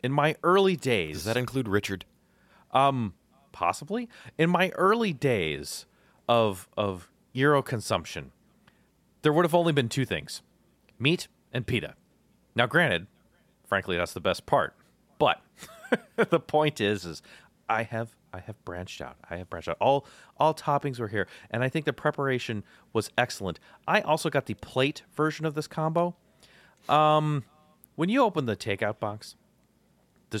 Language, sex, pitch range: English, male, 100-150 Hz